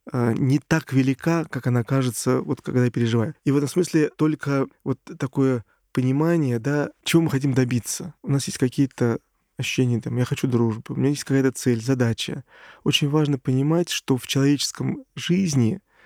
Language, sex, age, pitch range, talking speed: Russian, male, 20-39, 120-150 Hz, 170 wpm